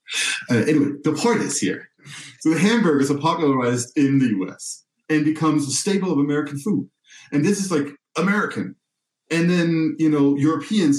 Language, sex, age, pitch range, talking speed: English, male, 40-59, 105-140 Hz, 170 wpm